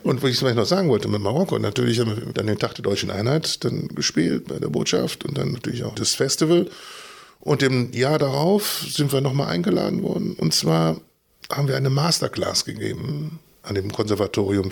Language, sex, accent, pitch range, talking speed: German, male, German, 110-150 Hz, 200 wpm